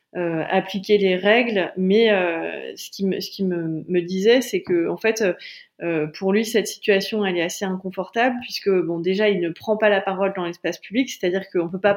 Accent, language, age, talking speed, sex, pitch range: French, French, 30-49, 215 wpm, female, 180-215 Hz